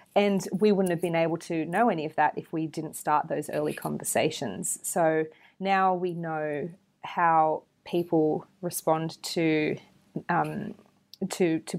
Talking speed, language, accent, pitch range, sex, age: 150 wpm, English, Australian, 155-180 Hz, female, 30-49